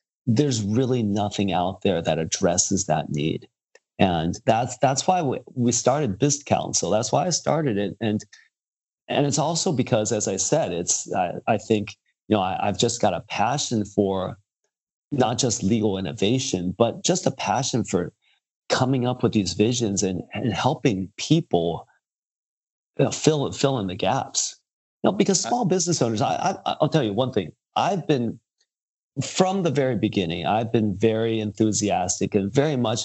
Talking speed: 175 wpm